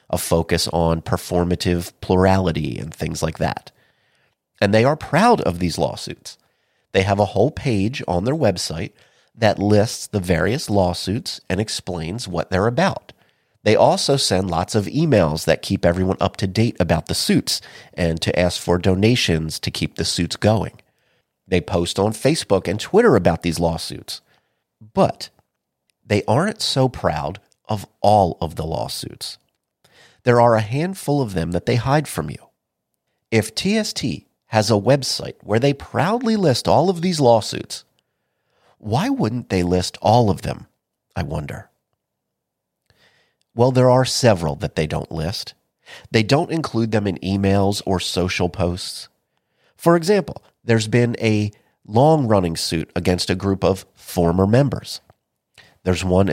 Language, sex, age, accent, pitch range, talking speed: English, male, 30-49, American, 90-125 Hz, 150 wpm